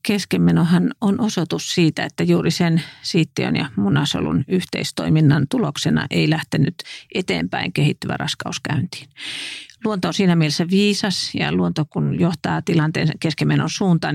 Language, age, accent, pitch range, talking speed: English, 50-69, Finnish, 155-190 Hz, 125 wpm